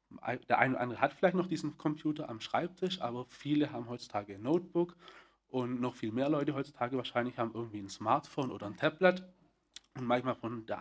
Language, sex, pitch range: German, male, 120-150 Hz